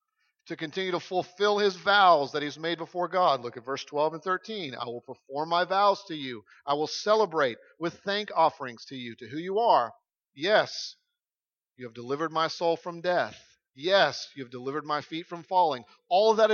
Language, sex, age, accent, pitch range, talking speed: English, male, 40-59, American, 150-205 Hz, 200 wpm